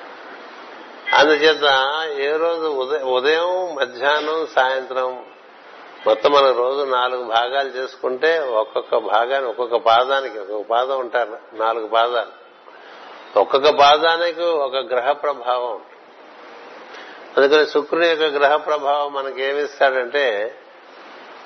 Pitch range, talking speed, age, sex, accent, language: 130-165 Hz, 90 wpm, 60-79, male, native, Telugu